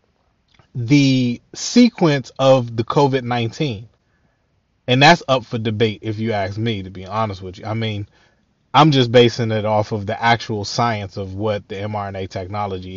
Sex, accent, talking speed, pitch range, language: male, American, 160 wpm, 110-130 Hz, English